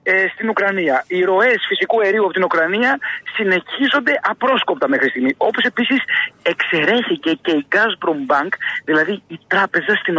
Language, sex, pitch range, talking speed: Greek, male, 185-250 Hz, 140 wpm